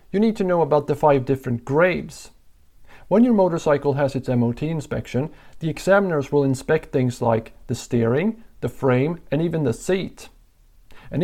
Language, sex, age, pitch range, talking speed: English, male, 50-69, 125-160 Hz, 165 wpm